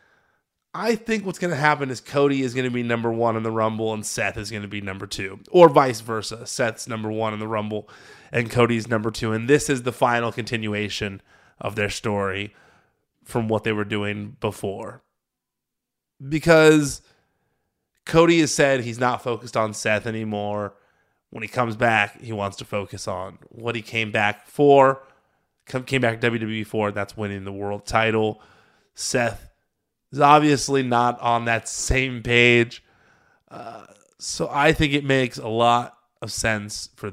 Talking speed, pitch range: 170 wpm, 105-130 Hz